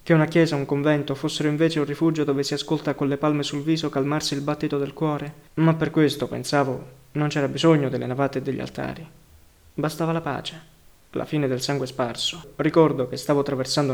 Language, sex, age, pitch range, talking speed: Italian, male, 20-39, 135-155 Hz, 200 wpm